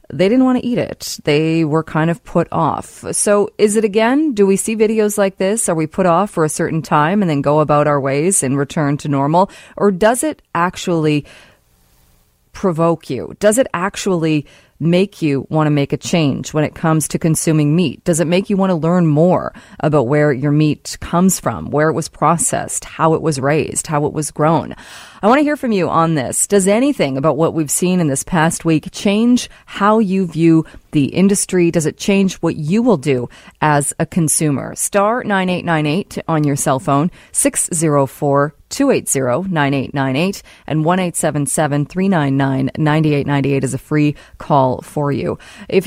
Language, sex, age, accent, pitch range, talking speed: English, female, 30-49, American, 145-185 Hz, 180 wpm